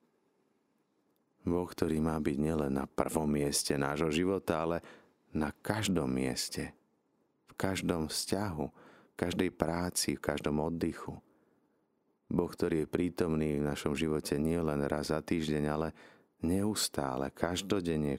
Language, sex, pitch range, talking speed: Slovak, male, 75-90 Hz, 120 wpm